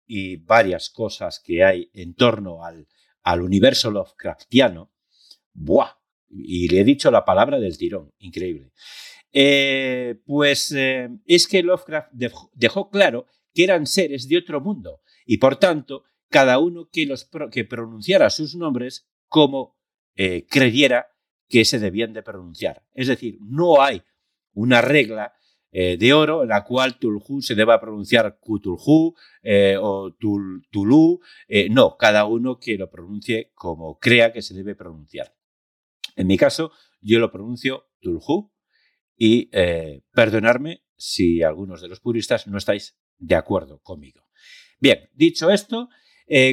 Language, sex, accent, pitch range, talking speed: English, male, Spanish, 100-160 Hz, 140 wpm